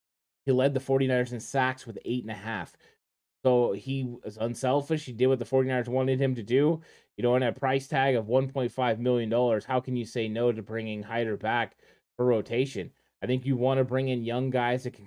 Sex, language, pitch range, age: male, English, 115-135 Hz, 20-39